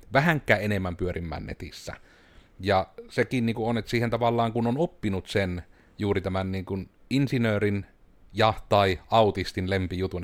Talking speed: 140 wpm